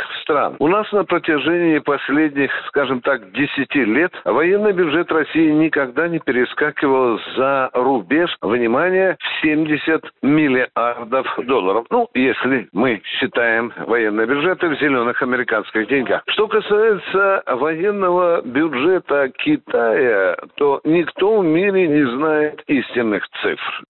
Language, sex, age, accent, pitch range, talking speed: Russian, male, 60-79, native, 130-205 Hz, 120 wpm